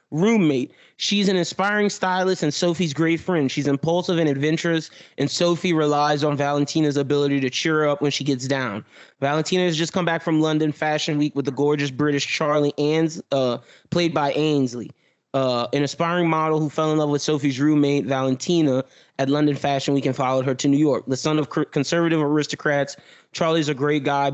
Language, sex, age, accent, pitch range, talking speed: English, male, 20-39, American, 135-155 Hz, 190 wpm